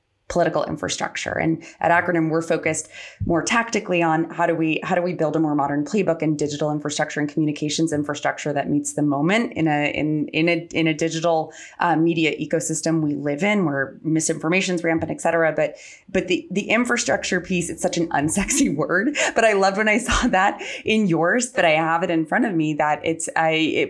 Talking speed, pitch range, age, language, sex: 210 wpm, 150-175 Hz, 20-39, English, female